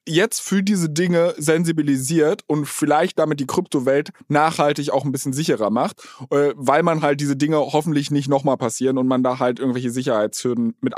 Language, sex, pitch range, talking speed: German, male, 135-175 Hz, 175 wpm